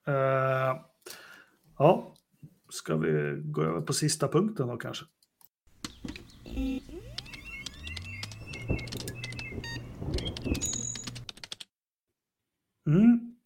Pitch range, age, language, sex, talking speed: 130-175 Hz, 30-49, Swedish, male, 55 wpm